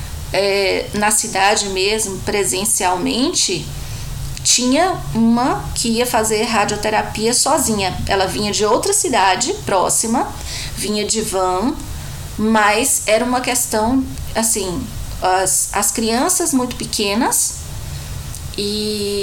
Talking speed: 95 wpm